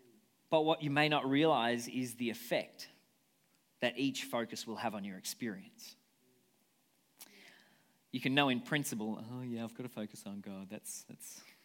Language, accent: English, Australian